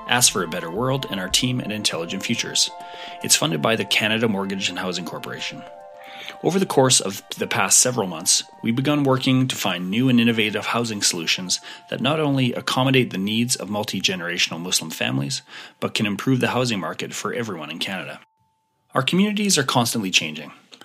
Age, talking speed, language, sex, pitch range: 30-49, 180 wpm, English, male, 100-130 Hz